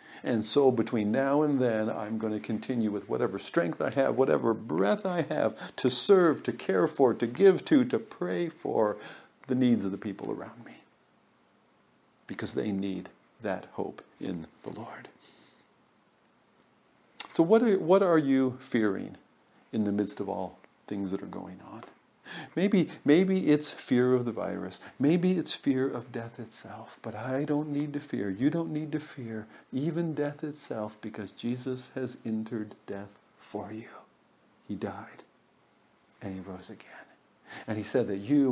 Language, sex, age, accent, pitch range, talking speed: English, male, 50-69, American, 110-145 Hz, 165 wpm